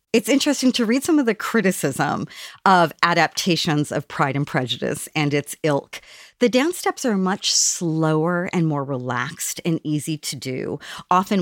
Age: 40-59